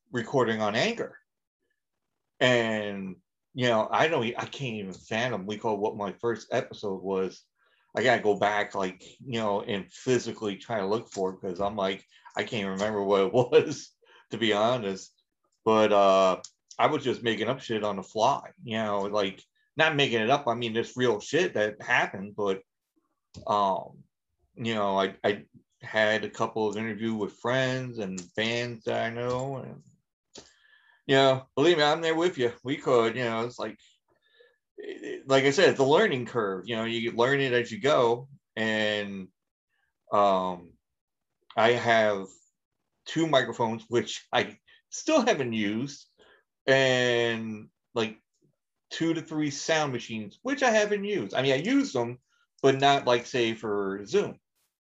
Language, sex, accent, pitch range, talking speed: English, male, American, 105-135 Hz, 165 wpm